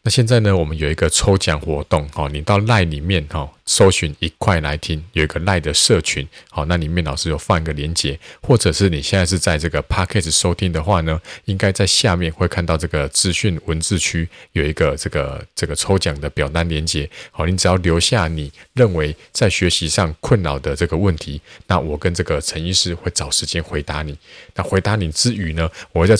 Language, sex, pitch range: Chinese, male, 80-100 Hz